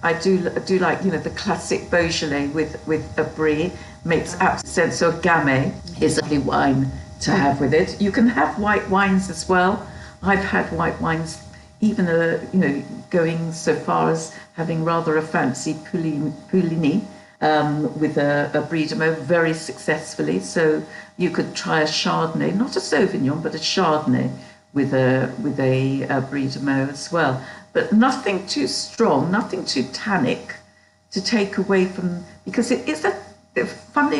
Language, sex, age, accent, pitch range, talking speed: English, female, 60-79, British, 155-200 Hz, 175 wpm